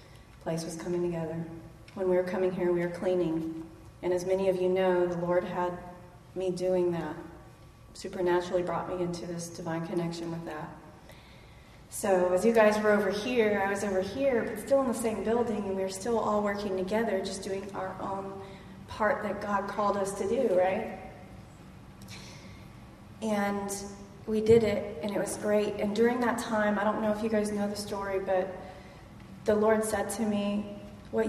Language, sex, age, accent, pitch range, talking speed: English, female, 30-49, American, 185-220 Hz, 185 wpm